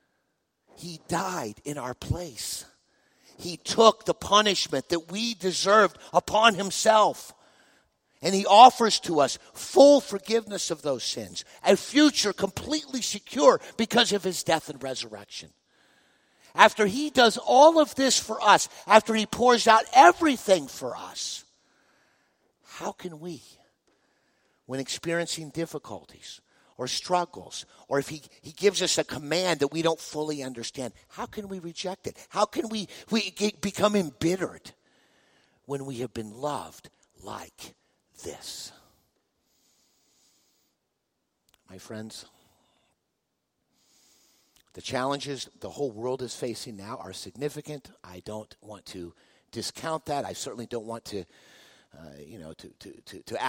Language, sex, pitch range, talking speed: English, male, 130-210 Hz, 135 wpm